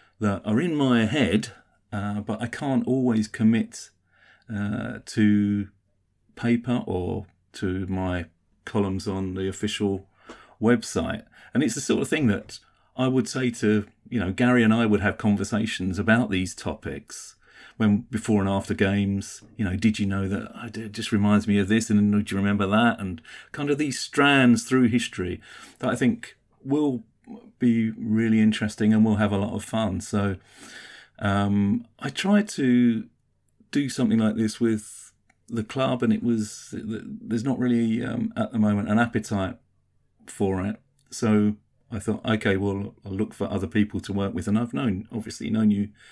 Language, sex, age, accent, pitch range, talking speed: English, male, 40-59, British, 100-115 Hz, 170 wpm